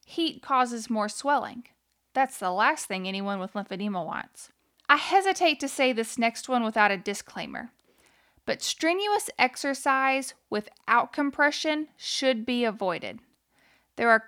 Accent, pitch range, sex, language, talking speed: American, 215-285 Hz, female, English, 135 wpm